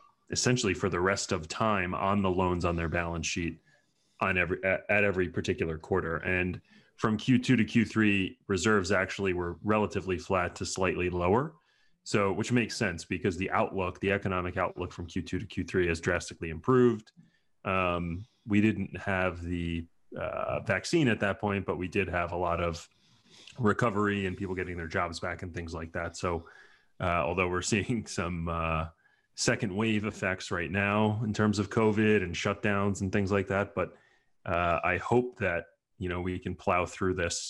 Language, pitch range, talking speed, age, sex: English, 90-105 Hz, 180 wpm, 30-49, male